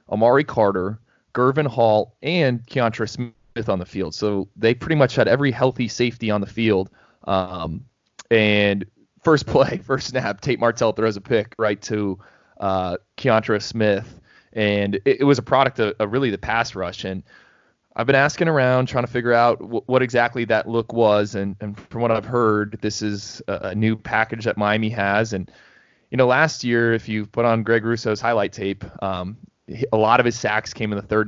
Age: 20-39